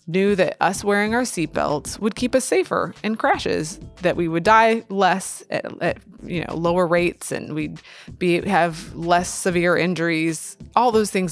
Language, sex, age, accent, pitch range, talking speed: English, female, 20-39, American, 165-210 Hz, 175 wpm